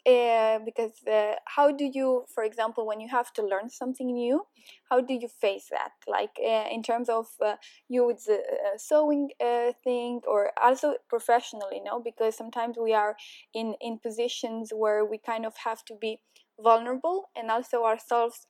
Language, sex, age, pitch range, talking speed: English, female, 10-29, 220-255 Hz, 180 wpm